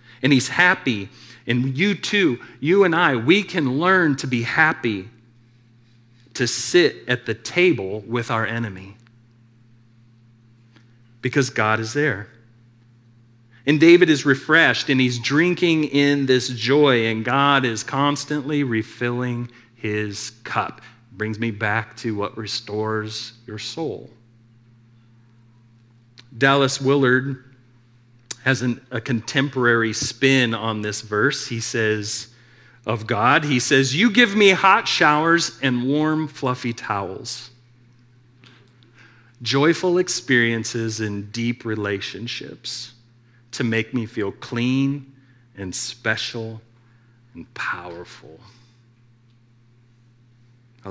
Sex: male